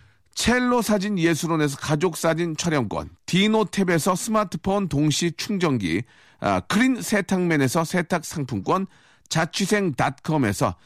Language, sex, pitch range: Korean, male, 155-210 Hz